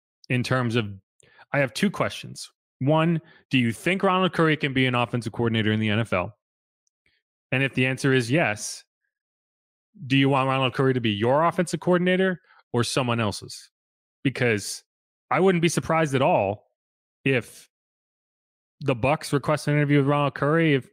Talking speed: 165 wpm